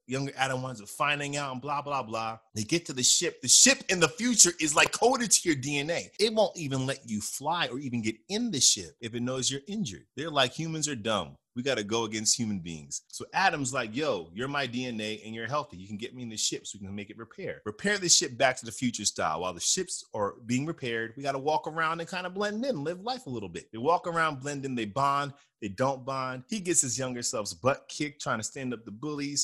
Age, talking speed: 30-49, 265 wpm